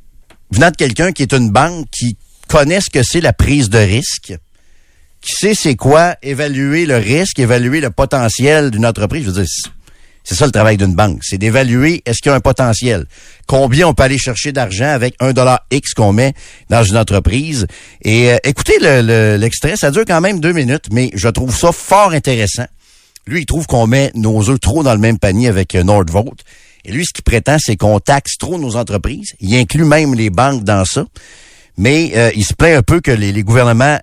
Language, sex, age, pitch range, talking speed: French, male, 50-69, 105-140 Hz, 215 wpm